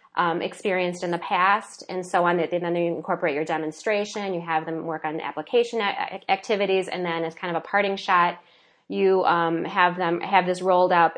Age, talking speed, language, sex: 20-39, 205 wpm, English, female